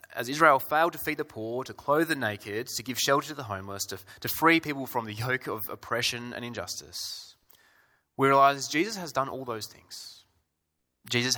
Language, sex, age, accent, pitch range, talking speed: English, male, 20-39, Australian, 90-130 Hz, 195 wpm